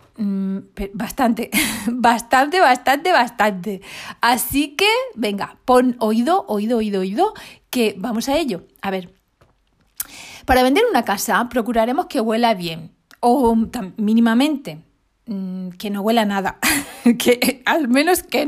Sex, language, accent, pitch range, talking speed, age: female, Spanish, Spanish, 200-260 Hz, 125 wpm, 30-49